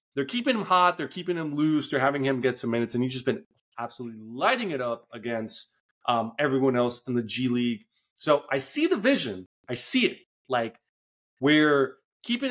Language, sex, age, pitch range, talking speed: English, male, 30-49, 115-145 Hz, 195 wpm